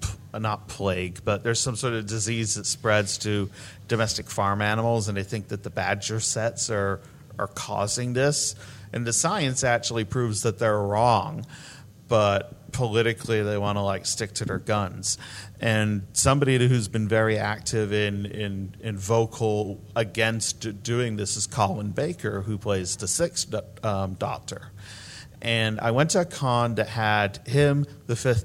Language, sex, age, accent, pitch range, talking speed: English, male, 40-59, American, 105-125 Hz, 160 wpm